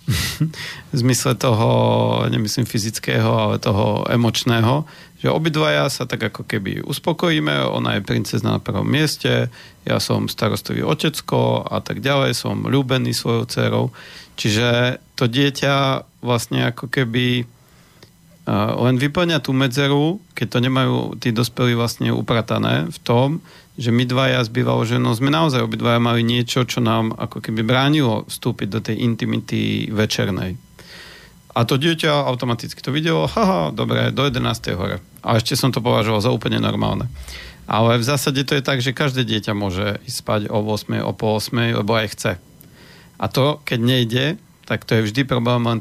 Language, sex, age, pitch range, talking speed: Slovak, male, 40-59, 110-135 Hz, 155 wpm